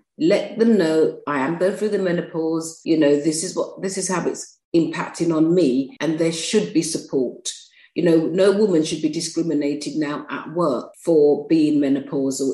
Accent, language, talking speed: British, English, 185 wpm